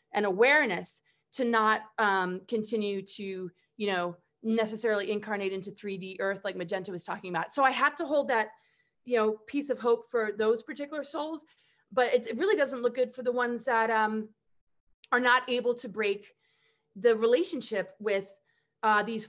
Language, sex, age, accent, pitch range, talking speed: English, female, 30-49, American, 195-240 Hz, 175 wpm